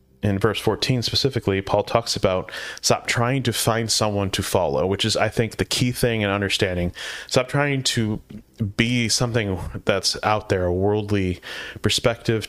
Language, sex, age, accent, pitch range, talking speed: English, male, 30-49, American, 90-115 Hz, 165 wpm